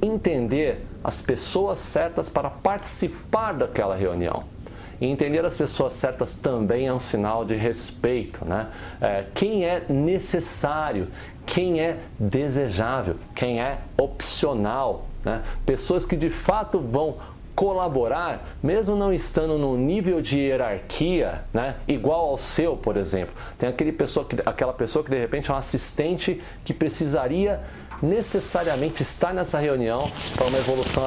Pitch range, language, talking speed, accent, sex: 105-155 Hz, Portuguese, 135 wpm, Brazilian, male